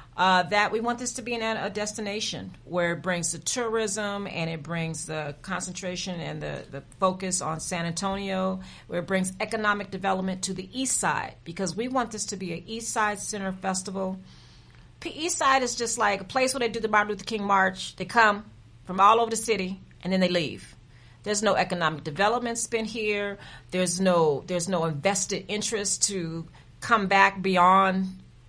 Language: English